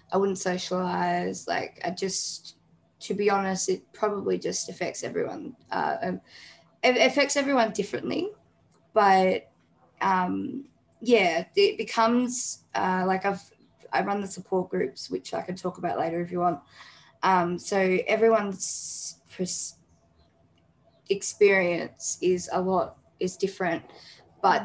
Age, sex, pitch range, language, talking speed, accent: 10-29, female, 175-195 Hz, English, 125 wpm, Australian